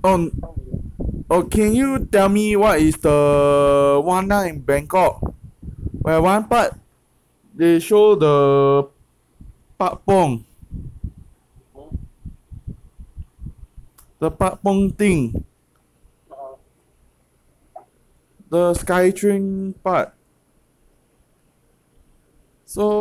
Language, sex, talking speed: English, male, 70 wpm